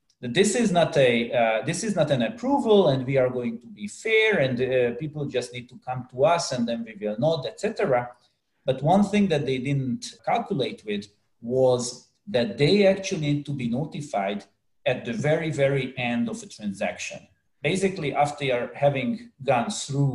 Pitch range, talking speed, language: 120-190 Hz, 185 wpm, Hungarian